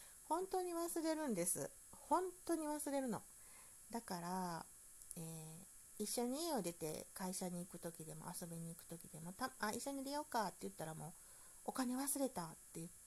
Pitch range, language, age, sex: 165-220 Hz, Japanese, 50-69, female